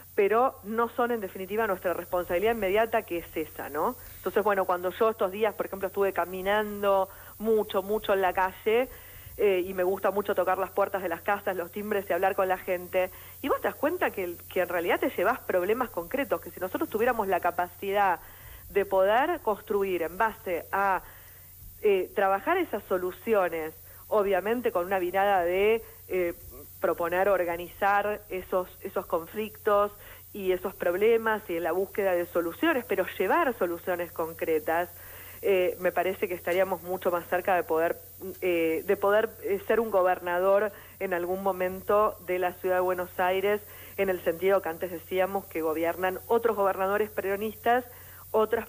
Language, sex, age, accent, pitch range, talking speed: Spanish, female, 40-59, Argentinian, 180-210 Hz, 165 wpm